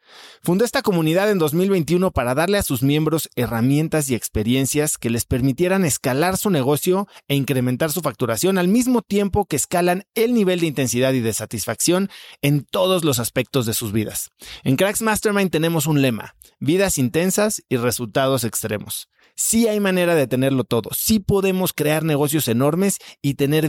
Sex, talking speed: male, 165 wpm